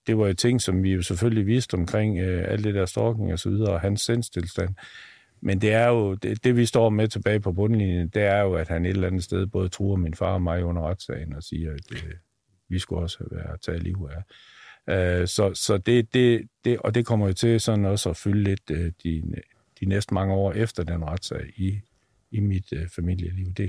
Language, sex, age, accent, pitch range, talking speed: Danish, male, 50-69, native, 85-105 Hz, 235 wpm